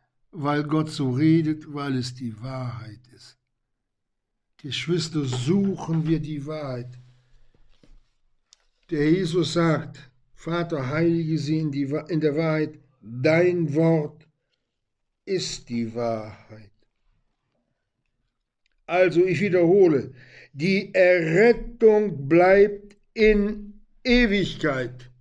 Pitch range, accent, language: 125-185 Hz, German, German